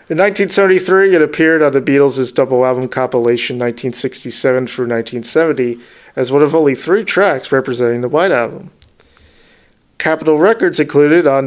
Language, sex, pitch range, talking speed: English, male, 125-160 Hz, 140 wpm